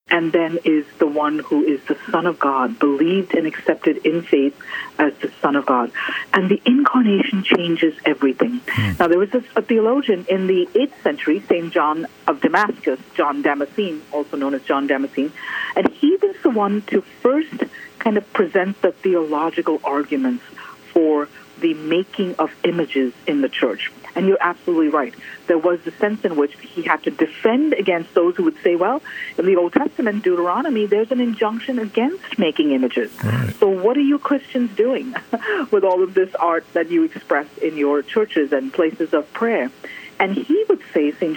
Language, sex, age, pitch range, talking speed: English, female, 50-69, 160-240 Hz, 180 wpm